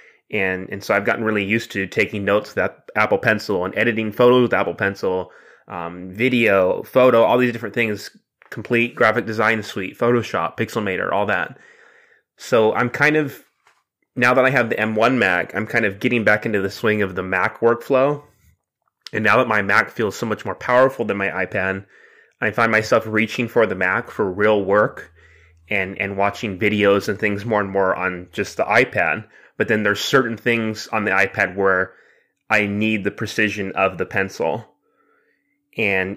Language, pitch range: English, 100-125 Hz